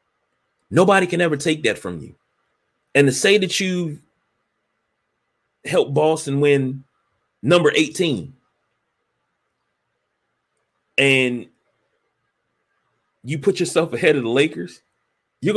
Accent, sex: American, male